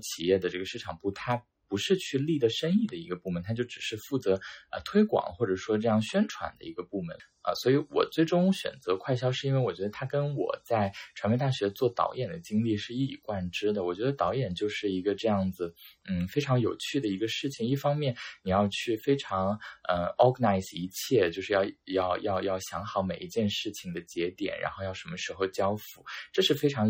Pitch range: 95-140 Hz